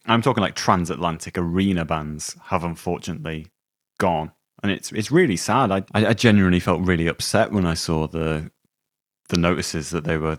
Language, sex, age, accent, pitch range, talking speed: English, male, 30-49, British, 80-95 Hz, 170 wpm